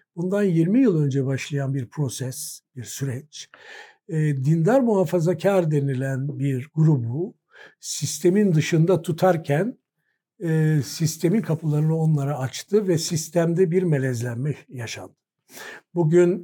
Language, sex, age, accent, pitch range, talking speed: Turkish, male, 60-79, native, 150-195 Hz, 100 wpm